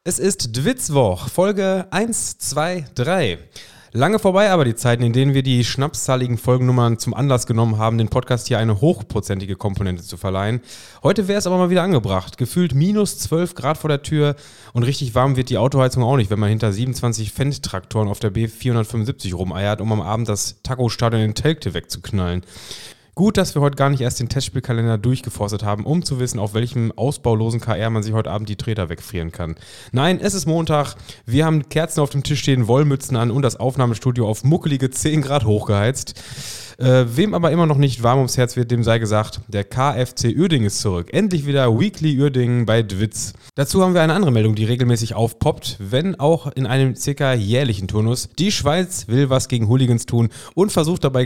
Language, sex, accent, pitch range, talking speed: German, male, German, 110-145 Hz, 195 wpm